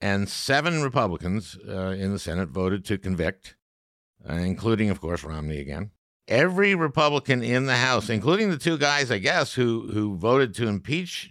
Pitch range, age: 90-115 Hz, 60-79